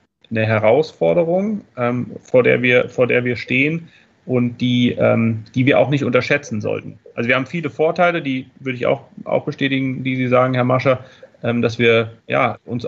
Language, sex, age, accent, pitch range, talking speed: German, male, 30-49, German, 120-145 Hz, 170 wpm